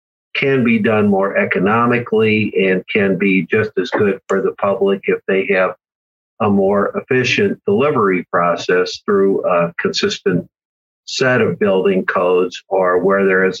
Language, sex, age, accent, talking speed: English, male, 50-69, American, 145 wpm